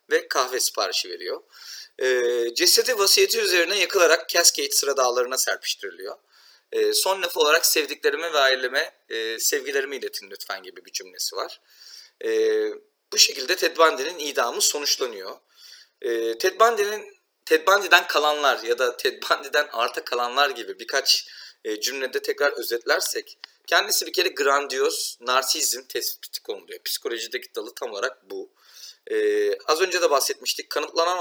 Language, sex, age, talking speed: Turkish, male, 40-59, 125 wpm